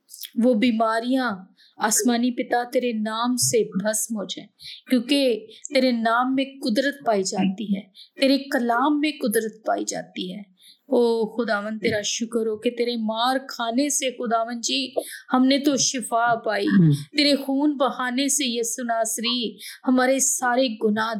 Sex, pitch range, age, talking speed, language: female, 215-255 Hz, 20-39, 105 wpm, Urdu